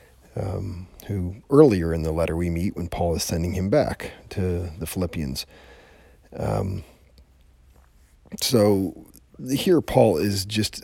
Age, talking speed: 40-59, 125 wpm